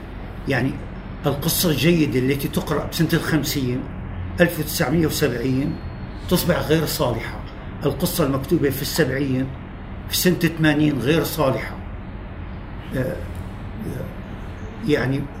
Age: 50-69